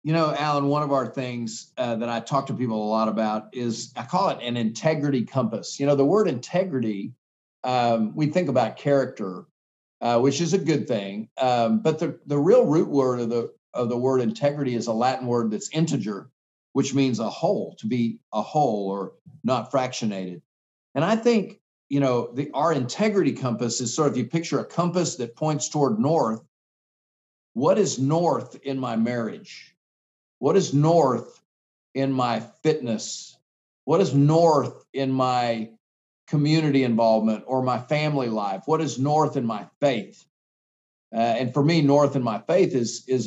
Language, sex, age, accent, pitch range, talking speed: English, male, 50-69, American, 115-155 Hz, 180 wpm